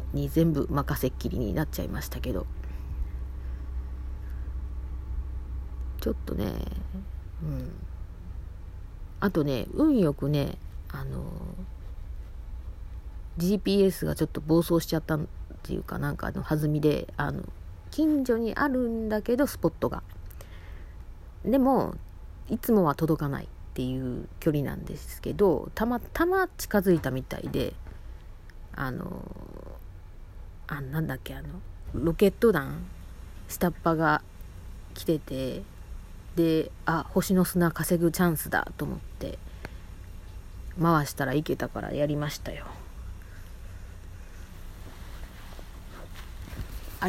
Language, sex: Japanese, female